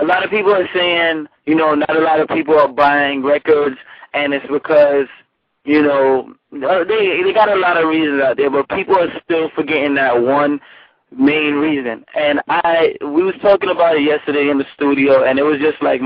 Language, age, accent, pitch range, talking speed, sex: English, 20-39, American, 145-200 Hz, 205 wpm, male